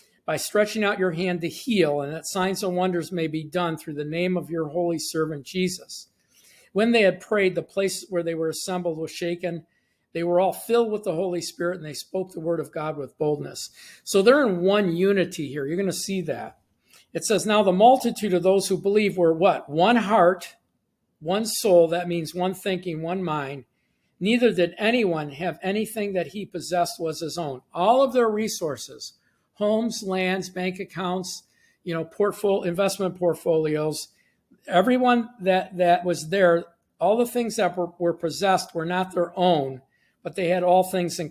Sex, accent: male, American